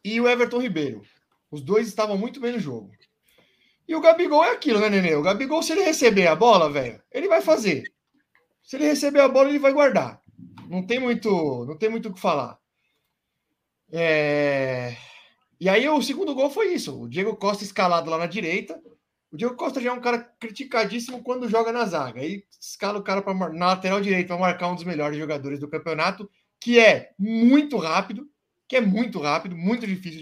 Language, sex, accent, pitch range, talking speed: Portuguese, male, Brazilian, 155-240 Hz, 190 wpm